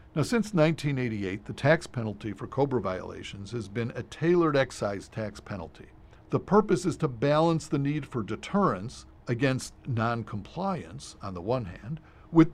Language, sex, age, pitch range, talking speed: English, male, 50-69, 110-145 Hz, 155 wpm